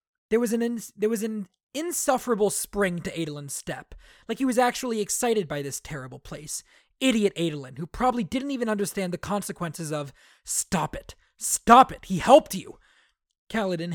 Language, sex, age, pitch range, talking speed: English, male, 20-39, 160-205 Hz, 170 wpm